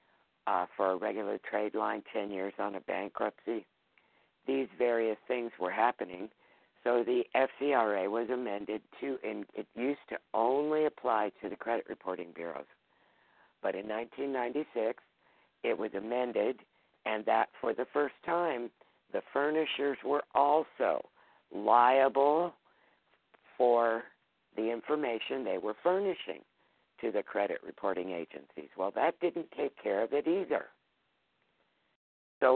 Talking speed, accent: 130 wpm, American